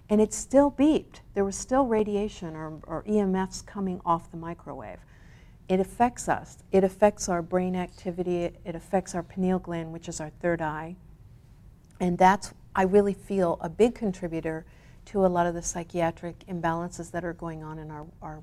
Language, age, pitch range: English, 50-69, 170-200 Hz